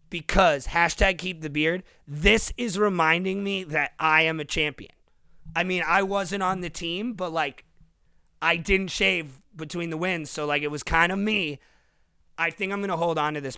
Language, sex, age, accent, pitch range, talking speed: English, male, 30-49, American, 145-175 Hz, 195 wpm